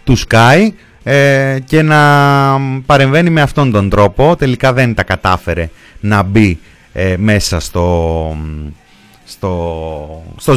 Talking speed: 120 wpm